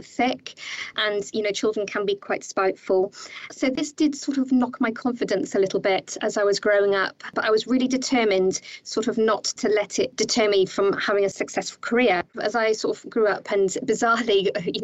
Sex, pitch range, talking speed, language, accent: female, 195-260 Hz, 210 wpm, English, British